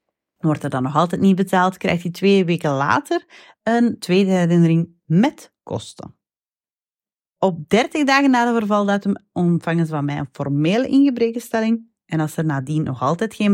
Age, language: 30-49, Dutch